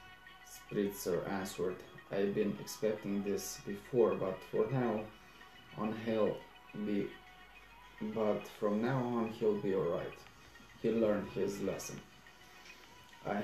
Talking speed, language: 115 wpm, Romanian